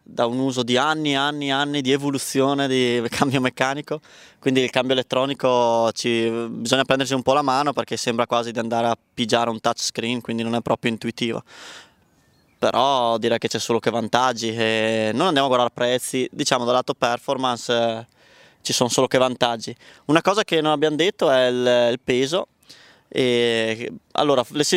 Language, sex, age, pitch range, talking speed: Italian, male, 20-39, 115-140 Hz, 175 wpm